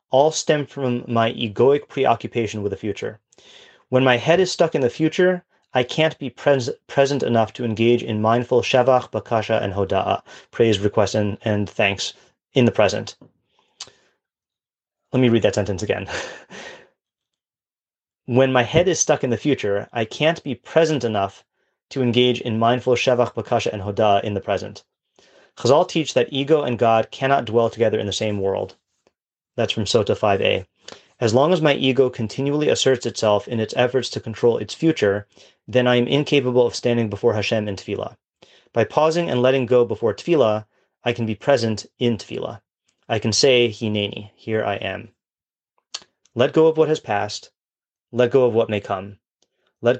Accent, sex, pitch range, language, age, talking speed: American, male, 105-135 Hz, English, 30-49, 170 wpm